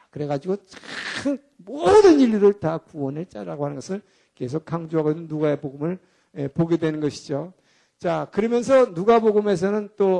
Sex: male